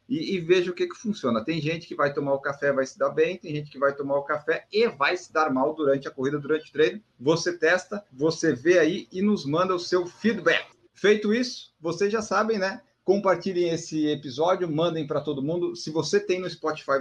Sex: male